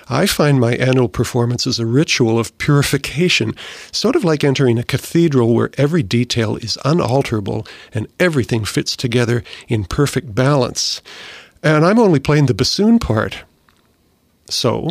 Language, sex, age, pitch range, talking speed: English, male, 50-69, 110-150 Hz, 145 wpm